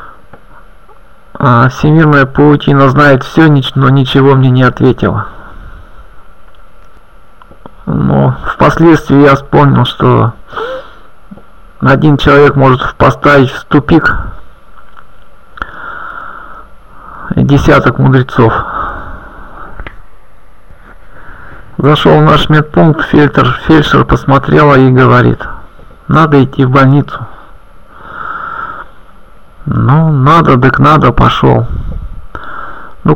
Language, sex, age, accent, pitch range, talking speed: Russian, male, 50-69, native, 130-155 Hz, 75 wpm